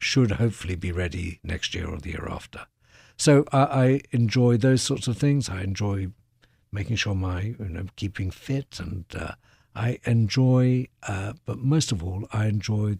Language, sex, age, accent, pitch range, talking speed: English, male, 60-79, British, 95-120 Hz, 175 wpm